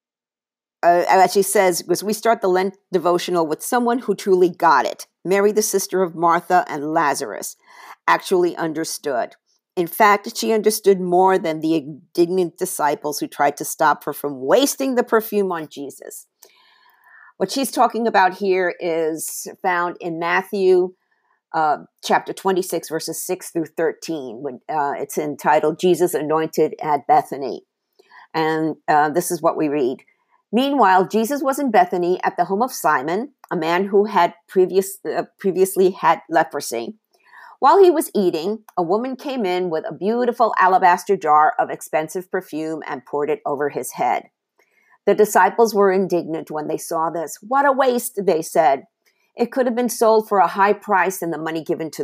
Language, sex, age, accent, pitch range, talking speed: English, female, 50-69, American, 160-225 Hz, 165 wpm